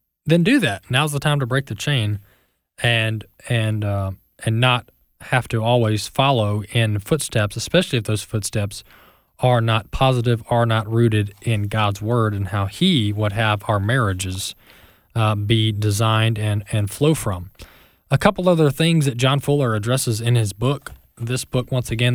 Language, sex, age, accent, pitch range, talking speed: English, male, 20-39, American, 105-130 Hz, 170 wpm